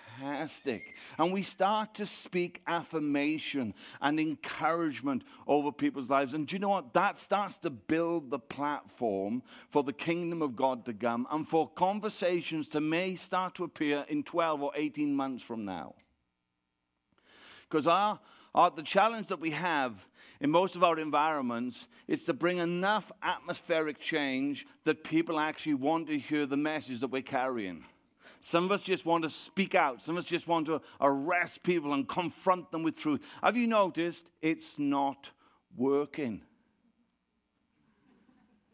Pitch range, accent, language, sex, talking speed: 145-185 Hz, British, English, male, 155 wpm